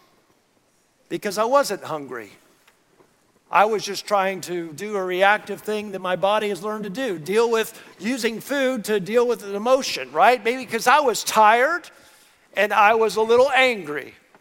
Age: 50-69